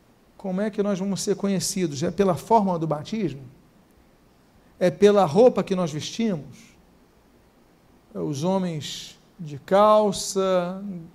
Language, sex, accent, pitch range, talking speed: Portuguese, male, Brazilian, 155-200 Hz, 125 wpm